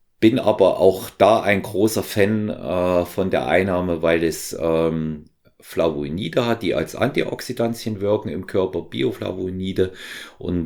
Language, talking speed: German, 135 wpm